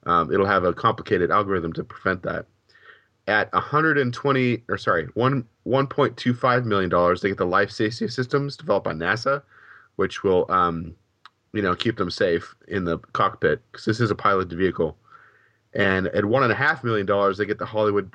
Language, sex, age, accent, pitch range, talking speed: English, male, 30-49, American, 100-130 Hz, 200 wpm